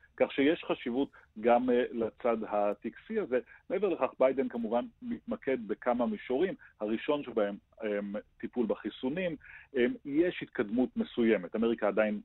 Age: 40-59